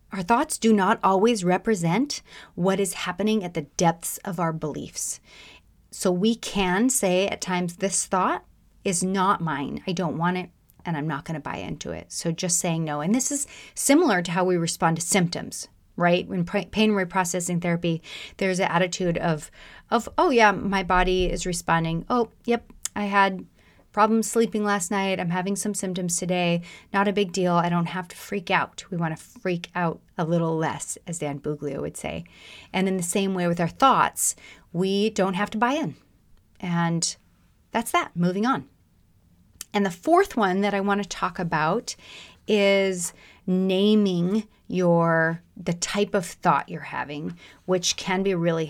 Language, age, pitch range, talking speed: English, 30-49, 170-205 Hz, 180 wpm